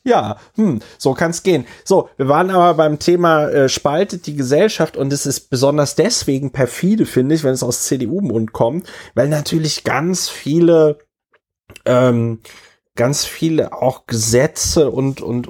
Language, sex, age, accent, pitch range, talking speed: German, male, 30-49, German, 115-140 Hz, 160 wpm